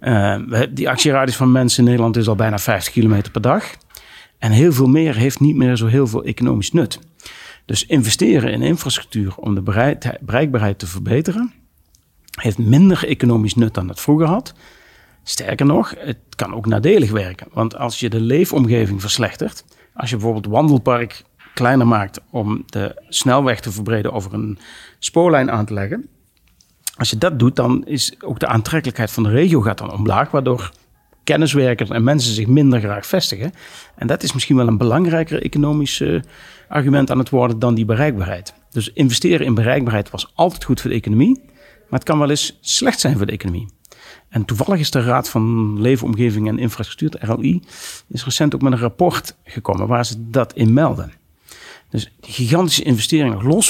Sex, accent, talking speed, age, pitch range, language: male, Dutch, 175 wpm, 40-59, 110-140 Hz, Dutch